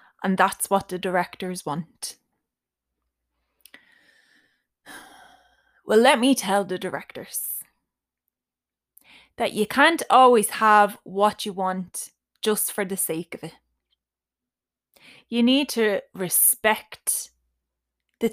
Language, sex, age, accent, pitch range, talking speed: English, female, 20-39, Irish, 190-235 Hz, 100 wpm